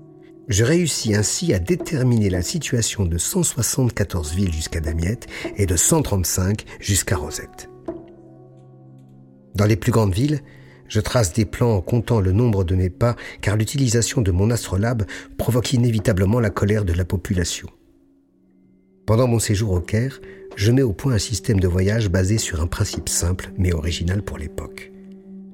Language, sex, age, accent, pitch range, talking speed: French, male, 50-69, French, 95-125 Hz, 155 wpm